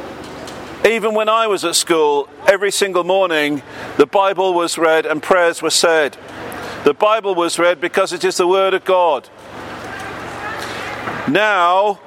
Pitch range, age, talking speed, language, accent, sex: 200-230 Hz, 50-69, 145 wpm, English, British, male